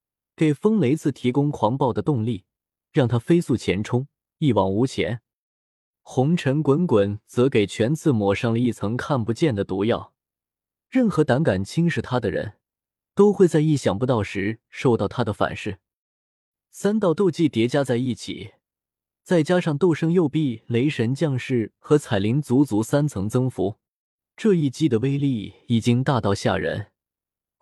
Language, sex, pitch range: Chinese, male, 115-155 Hz